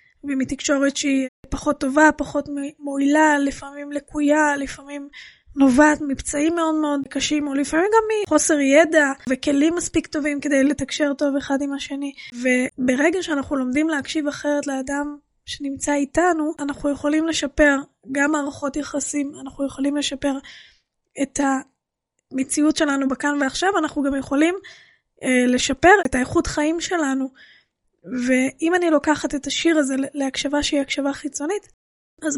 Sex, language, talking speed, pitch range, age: female, Hebrew, 130 wpm, 275-310 Hz, 20-39